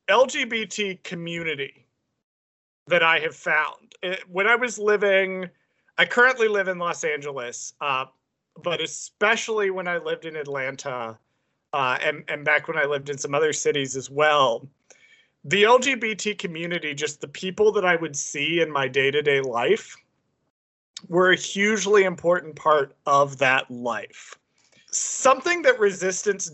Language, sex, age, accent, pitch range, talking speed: English, male, 30-49, American, 145-205 Hz, 140 wpm